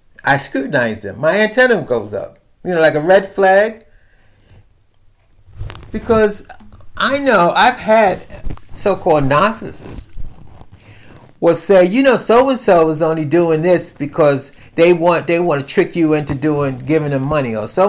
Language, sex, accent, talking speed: English, male, American, 155 wpm